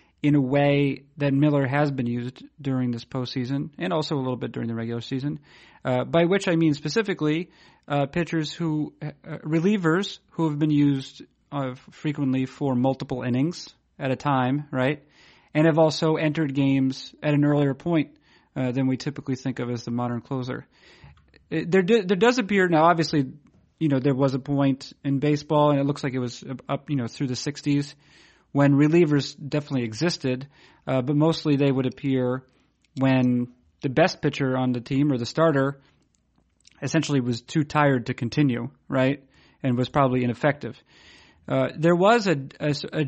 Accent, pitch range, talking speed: American, 130-155 Hz, 175 wpm